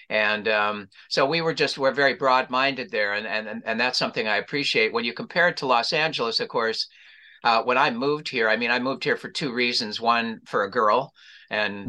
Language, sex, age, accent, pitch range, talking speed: English, male, 50-69, American, 105-135 Hz, 220 wpm